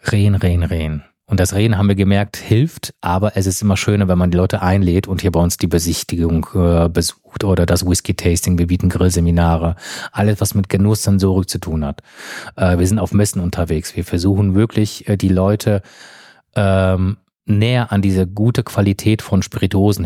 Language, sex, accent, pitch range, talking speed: German, male, German, 95-110 Hz, 185 wpm